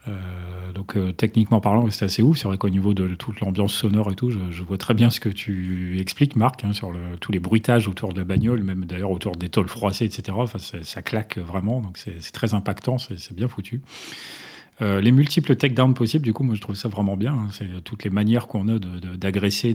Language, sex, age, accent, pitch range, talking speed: French, male, 40-59, French, 95-115 Hz, 245 wpm